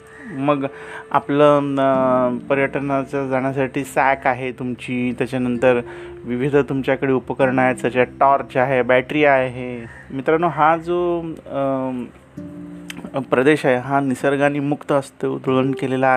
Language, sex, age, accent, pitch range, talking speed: Marathi, male, 30-49, native, 125-145 Hz, 105 wpm